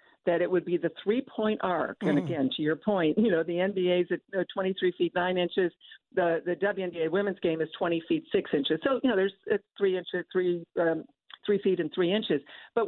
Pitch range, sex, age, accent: 165-200 Hz, female, 60-79, American